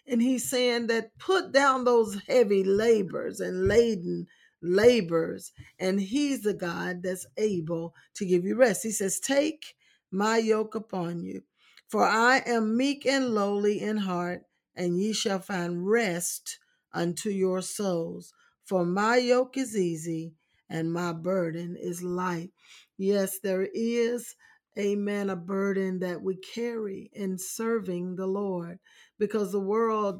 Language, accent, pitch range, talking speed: English, American, 185-230 Hz, 145 wpm